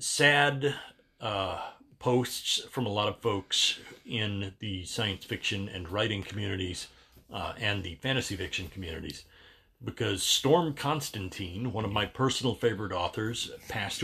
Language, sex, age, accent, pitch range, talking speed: English, male, 40-59, American, 90-120 Hz, 135 wpm